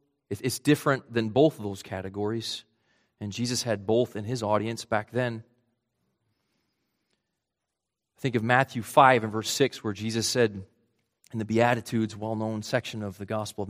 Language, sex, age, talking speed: English, male, 30-49, 155 wpm